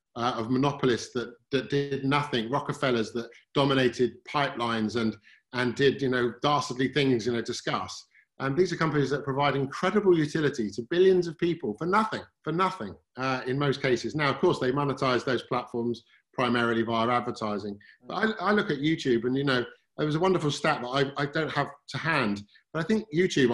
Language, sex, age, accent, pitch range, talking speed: English, male, 50-69, British, 125-165 Hz, 195 wpm